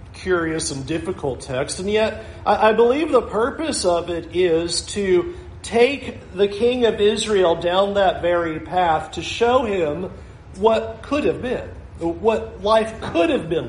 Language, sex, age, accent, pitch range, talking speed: English, male, 50-69, American, 165-215 Hz, 155 wpm